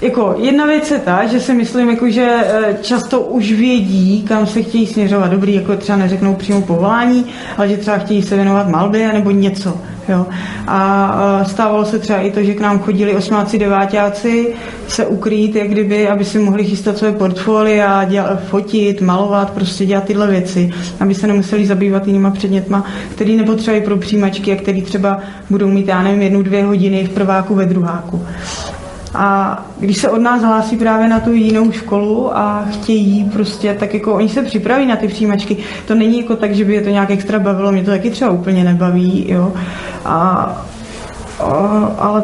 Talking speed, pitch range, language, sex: 185 wpm, 195-220 Hz, Czech, female